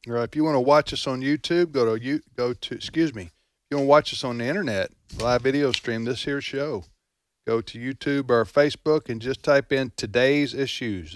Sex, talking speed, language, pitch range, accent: male, 220 wpm, English, 110-145 Hz, American